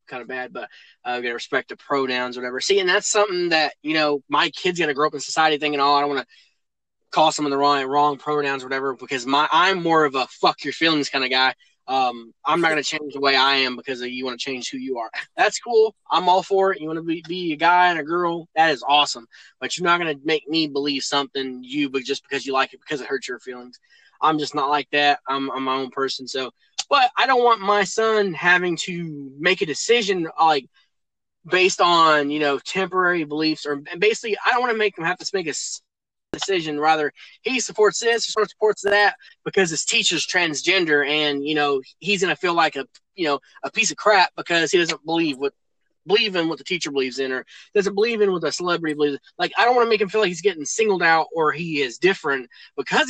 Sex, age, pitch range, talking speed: male, 20-39, 140-185 Hz, 245 wpm